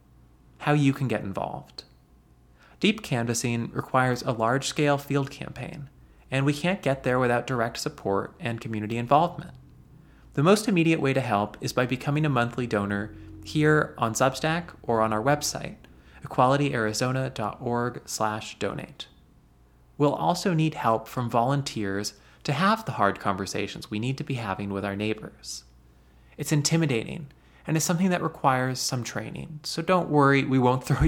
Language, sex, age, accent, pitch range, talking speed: English, male, 20-39, American, 105-140 Hz, 150 wpm